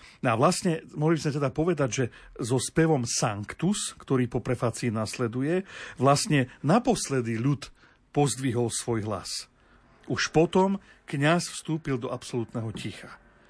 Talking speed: 130 wpm